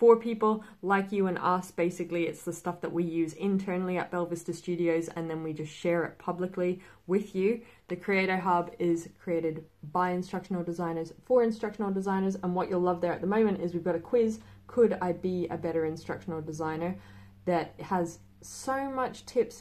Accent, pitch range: Australian, 160-195 Hz